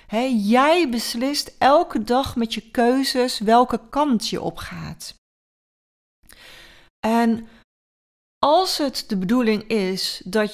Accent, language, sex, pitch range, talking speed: Dutch, Dutch, female, 205-255 Hz, 100 wpm